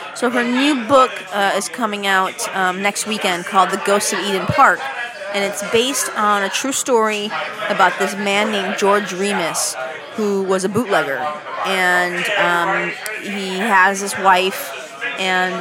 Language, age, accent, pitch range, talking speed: English, 30-49, American, 180-205 Hz, 160 wpm